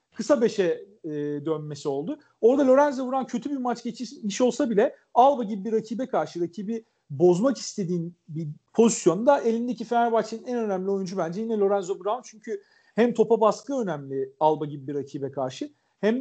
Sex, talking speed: male, 165 wpm